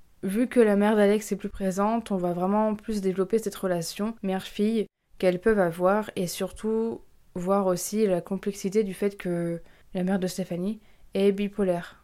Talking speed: 170 wpm